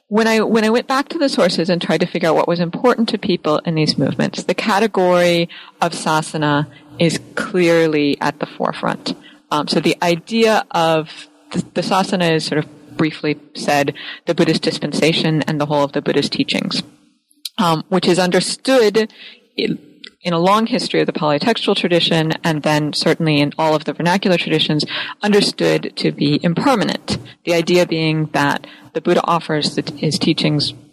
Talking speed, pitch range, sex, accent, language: 175 wpm, 155-200 Hz, female, American, English